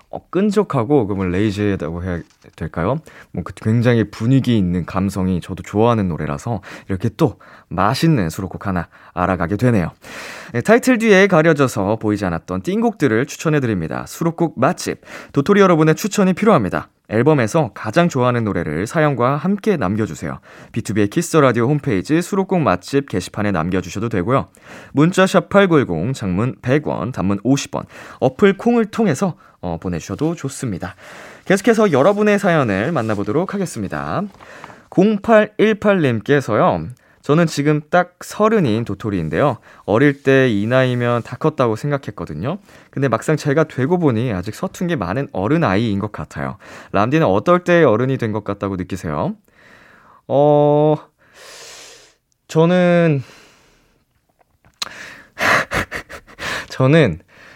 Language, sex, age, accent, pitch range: Korean, male, 20-39, native, 100-170 Hz